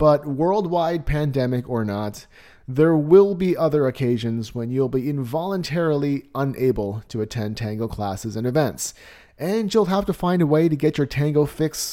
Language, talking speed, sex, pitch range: English, 165 wpm, male, 120-170 Hz